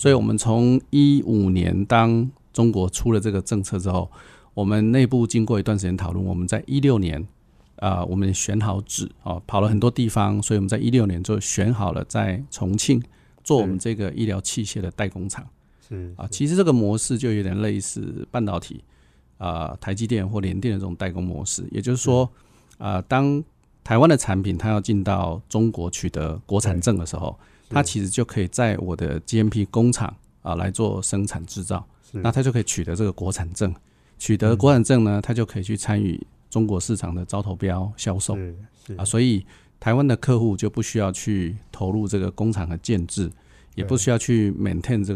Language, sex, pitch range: Chinese, male, 95-115 Hz